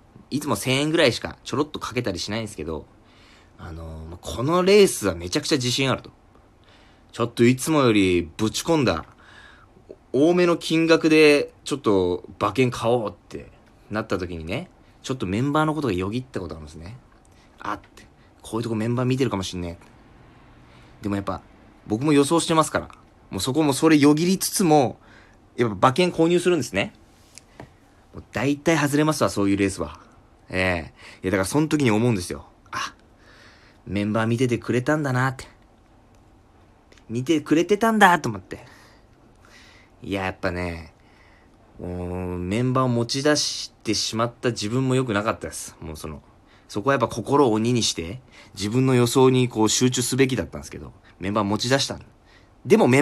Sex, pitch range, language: male, 100-135 Hz, Japanese